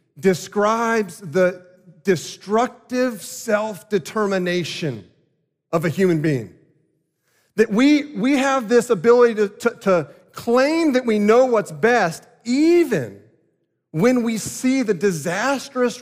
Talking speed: 110 wpm